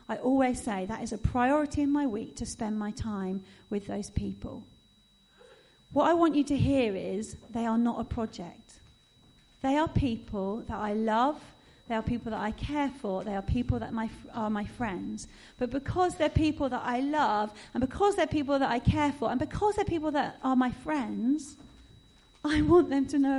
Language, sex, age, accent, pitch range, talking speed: English, female, 40-59, British, 230-320 Hz, 200 wpm